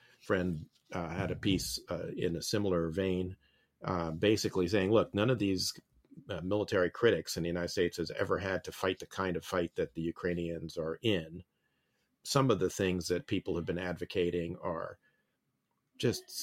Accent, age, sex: American, 50-69, male